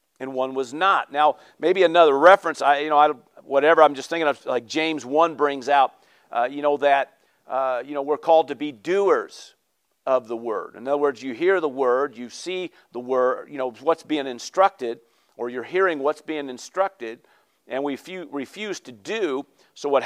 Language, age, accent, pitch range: English, 50-69, American, 140-200 Hz